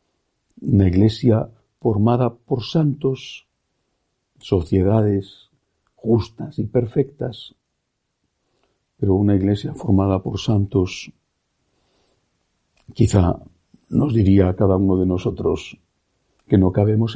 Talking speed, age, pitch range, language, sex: 90 wpm, 60-79, 95-120 Hz, Spanish, male